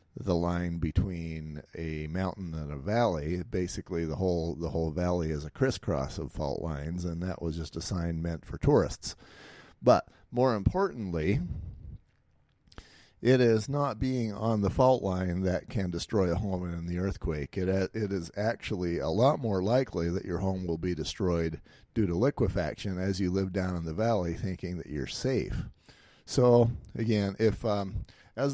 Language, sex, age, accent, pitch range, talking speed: English, male, 50-69, American, 85-110 Hz, 170 wpm